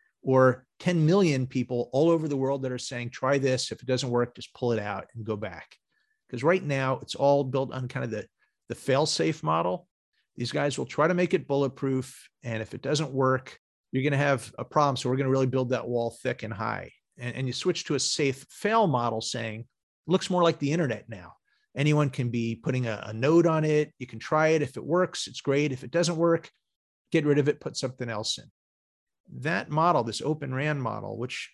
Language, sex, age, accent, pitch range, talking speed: English, male, 40-59, American, 120-160 Hz, 230 wpm